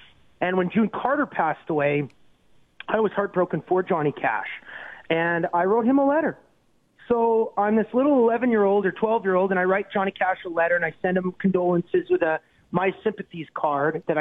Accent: American